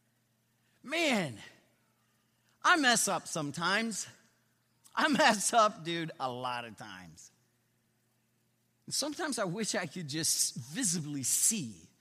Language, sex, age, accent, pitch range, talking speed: English, male, 40-59, American, 185-265 Hz, 105 wpm